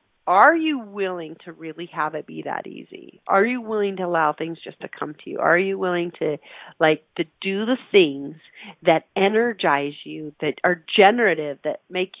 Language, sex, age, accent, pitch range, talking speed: English, female, 40-59, American, 195-275 Hz, 185 wpm